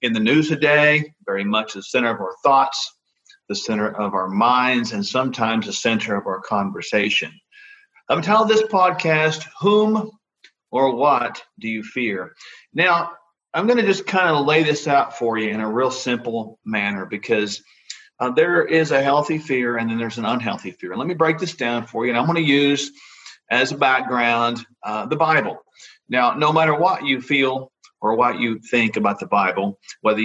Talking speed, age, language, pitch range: 190 wpm, 50-69, English, 115-170 Hz